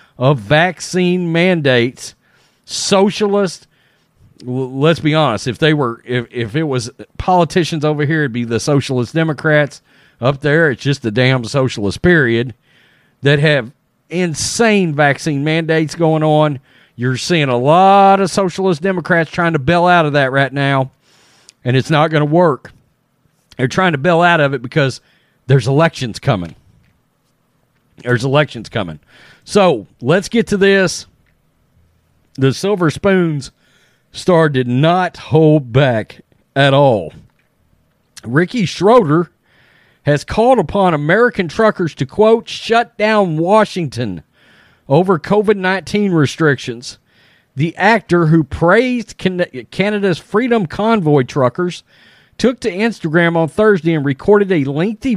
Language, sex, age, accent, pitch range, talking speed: English, male, 40-59, American, 135-185 Hz, 130 wpm